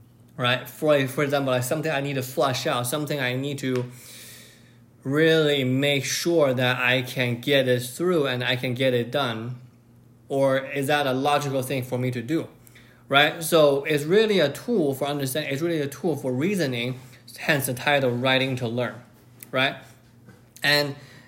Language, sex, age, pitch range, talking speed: English, male, 20-39, 125-150 Hz, 175 wpm